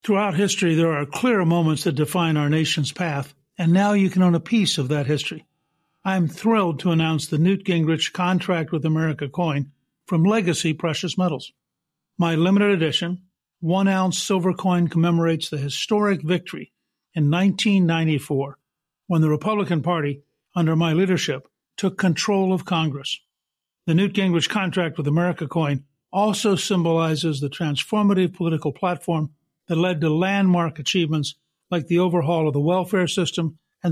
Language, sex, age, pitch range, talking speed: English, male, 60-79, 155-190 Hz, 150 wpm